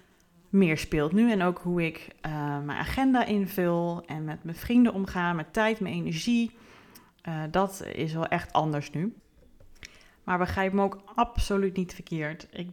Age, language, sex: 30-49, Dutch, female